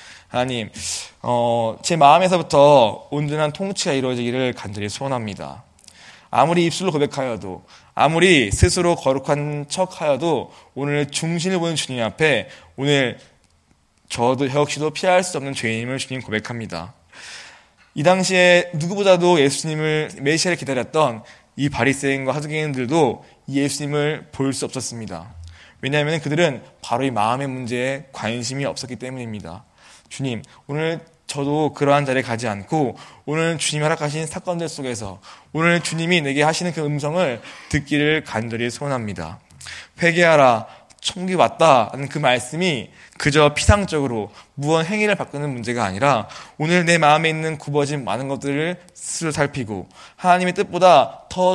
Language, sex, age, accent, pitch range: Korean, male, 20-39, native, 125-160 Hz